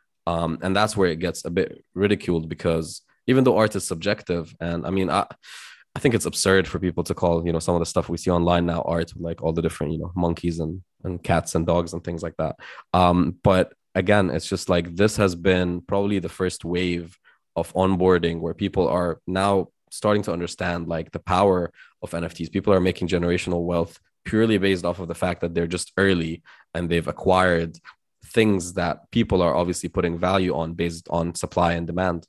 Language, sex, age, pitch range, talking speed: English, male, 20-39, 85-95 Hz, 210 wpm